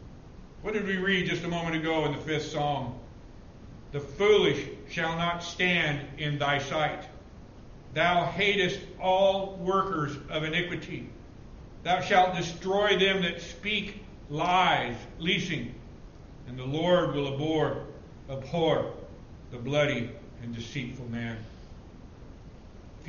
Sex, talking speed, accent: male, 120 wpm, American